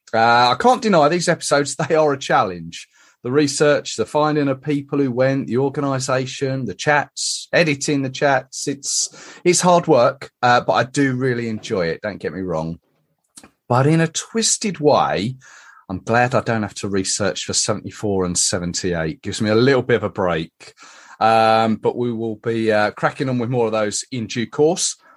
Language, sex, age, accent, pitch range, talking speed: English, male, 30-49, British, 110-155 Hz, 190 wpm